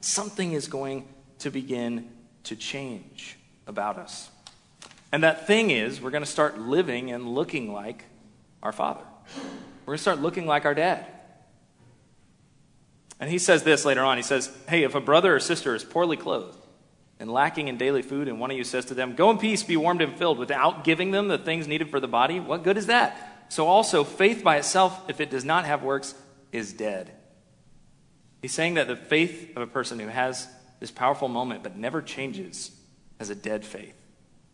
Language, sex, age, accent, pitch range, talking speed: English, male, 30-49, American, 120-160 Hz, 195 wpm